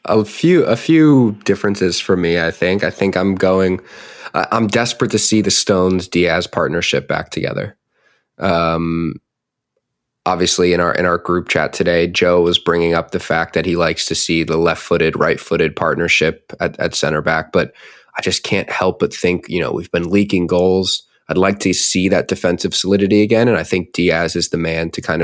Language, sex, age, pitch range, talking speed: English, male, 20-39, 85-105 Hz, 195 wpm